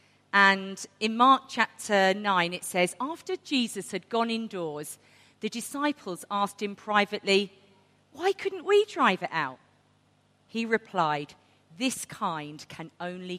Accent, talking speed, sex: British, 130 wpm, female